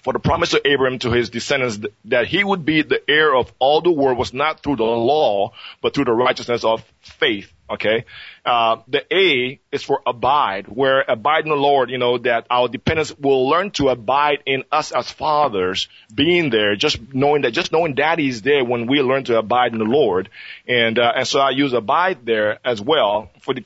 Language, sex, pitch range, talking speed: English, male, 120-145 Hz, 210 wpm